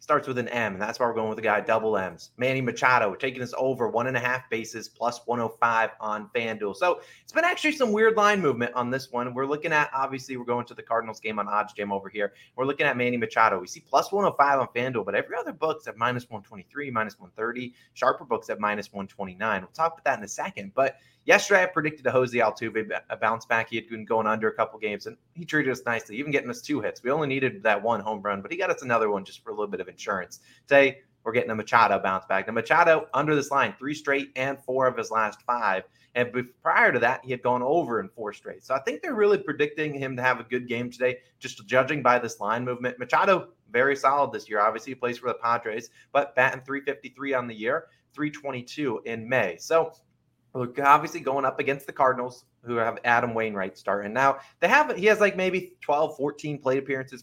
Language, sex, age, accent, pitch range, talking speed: English, male, 30-49, American, 115-140 Hz, 240 wpm